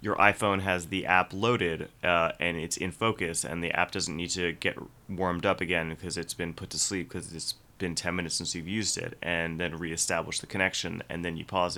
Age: 30-49